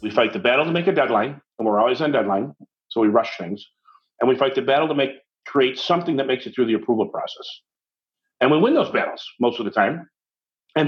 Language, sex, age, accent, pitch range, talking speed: English, male, 50-69, American, 130-205 Hz, 235 wpm